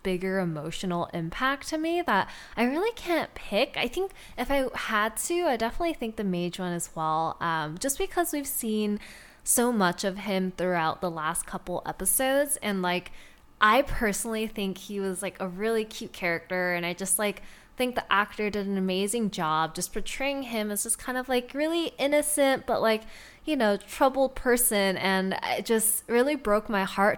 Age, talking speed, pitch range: 10-29, 185 wpm, 180-240 Hz